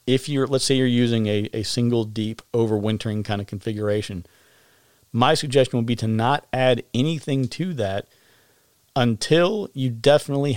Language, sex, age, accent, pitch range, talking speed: English, male, 40-59, American, 110-130 Hz, 155 wpm